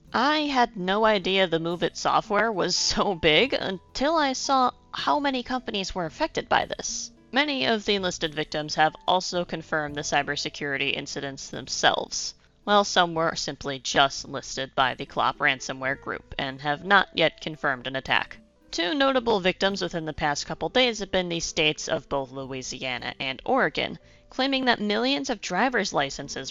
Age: 30-49